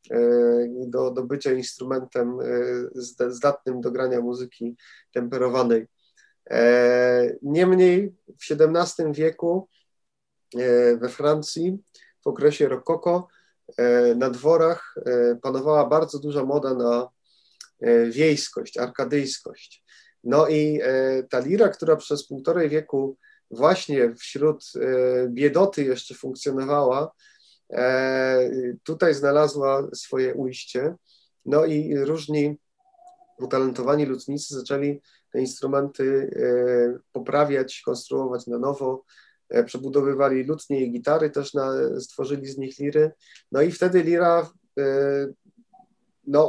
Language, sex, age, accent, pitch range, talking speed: Polish, male, 30-49, native, 130-160 Hz, 90 wpm